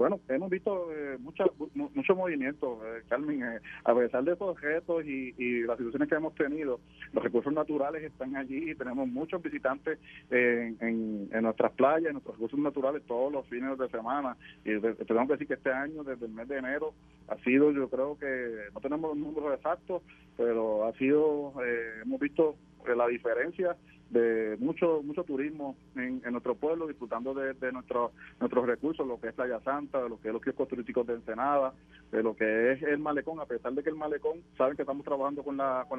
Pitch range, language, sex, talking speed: 125-160 Hz, Spanish, male, 205 wpm